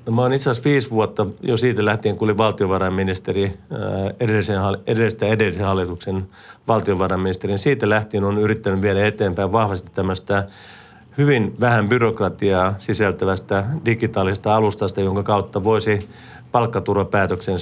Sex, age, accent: male, 40-59, native